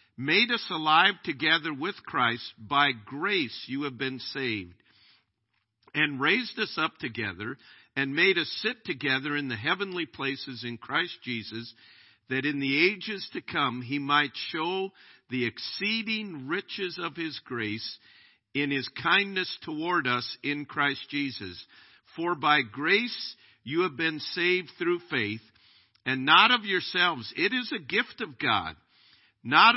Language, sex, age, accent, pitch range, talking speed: English, male, 50-69, American, 125-175 Hz, 145 wpm